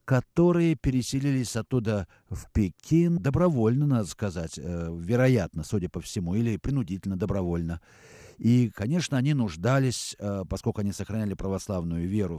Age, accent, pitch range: 60-79, native, 100-135 Hz